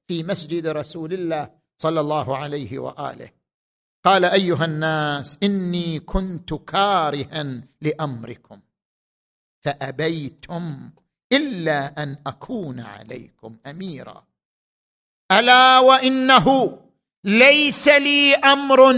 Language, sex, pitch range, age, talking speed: Arabic, male, 165-260 Hz, 50-69, 80 wpm